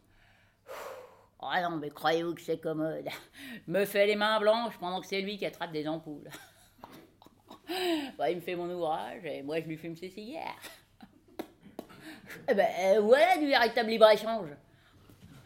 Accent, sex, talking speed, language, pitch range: French, female, 150 wpm, French, 155-230 Hz